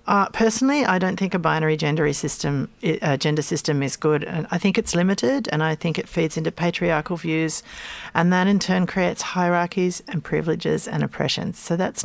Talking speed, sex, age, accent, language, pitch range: 180 wpm, female, 40-59, Australian, English, 155-190 Hz